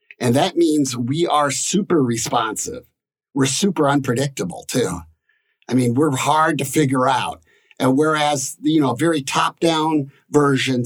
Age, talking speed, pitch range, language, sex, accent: 50-69, 140 wpm, 120-150 Hz, English, male, American